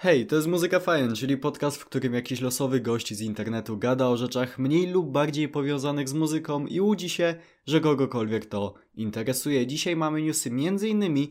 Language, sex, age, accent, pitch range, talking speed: Polish, male, 20-39, native, 125-155 Hz, 180 wpm